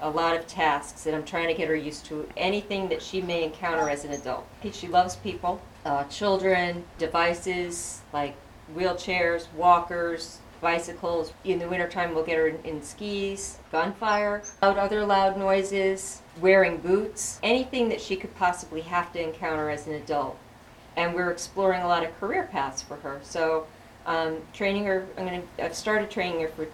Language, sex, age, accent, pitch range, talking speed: English, female, 40-59, American, 155-185 Hz, 175 wpm